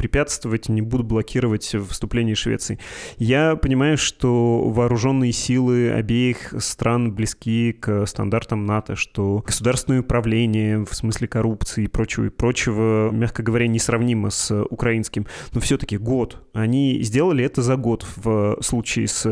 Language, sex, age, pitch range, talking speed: Russian, male, 20-39, 110-130 Hz, 135 wpm